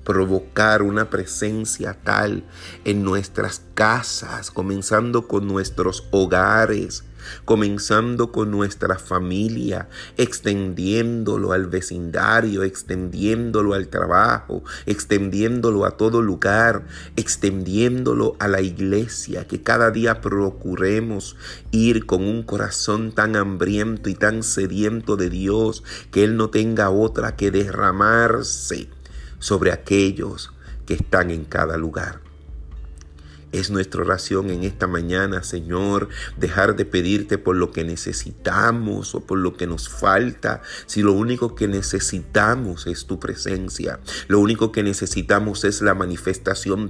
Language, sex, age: Spanish, male, 30-49